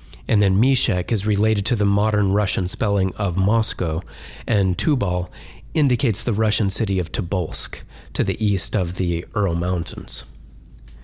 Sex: male